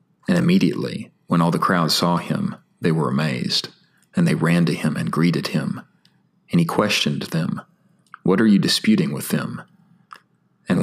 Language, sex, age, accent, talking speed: English, male, 40-59, American, 165 wpm